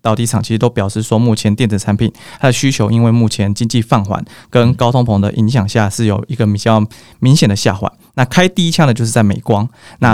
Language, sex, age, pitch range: Chinese, male, 20-39, 110-130 Hz